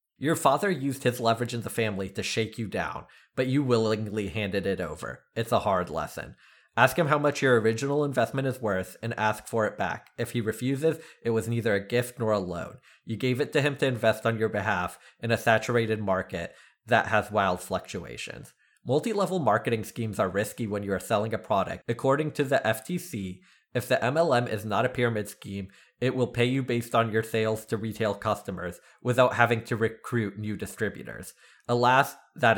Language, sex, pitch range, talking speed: English, male, 105-130 Hz, 200 wpm